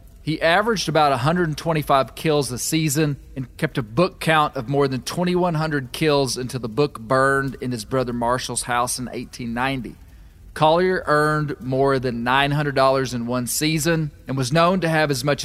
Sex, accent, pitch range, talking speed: male, American, 125-155 Hz, 165 wpm